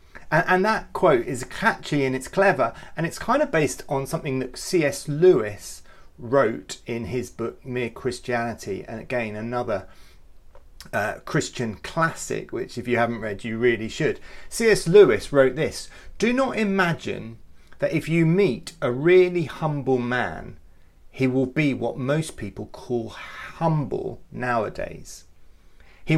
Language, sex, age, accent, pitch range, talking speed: English, male, 30-49, British, 115-165 Hz, 145 wpm